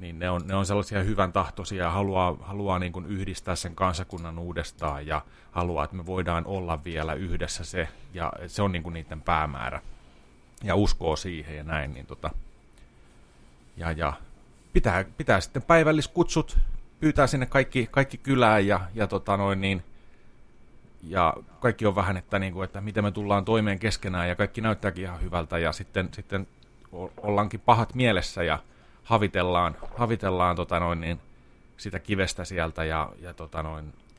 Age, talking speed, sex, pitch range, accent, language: 30-49, 150 wpm, male, 85-105 Hz, native, Finnish